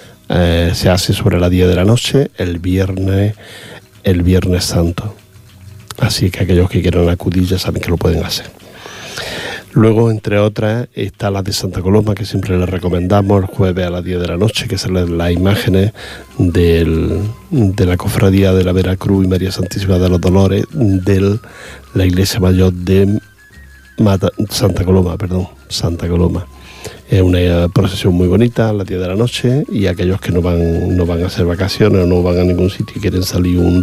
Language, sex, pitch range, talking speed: Portuguese, male, 90-105 Hz, 190 wpm